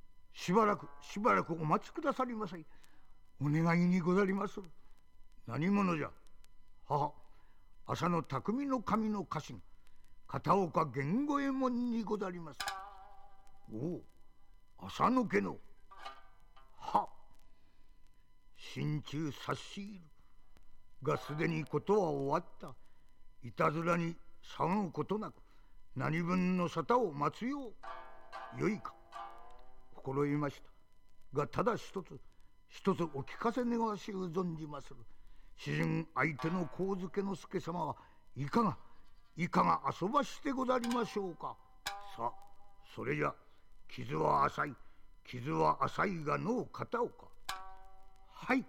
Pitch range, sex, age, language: 130-200 Hz, male, 50-69, English